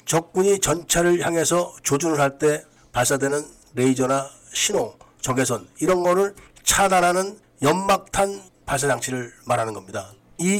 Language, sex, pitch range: Korean, male, 140-185 Hz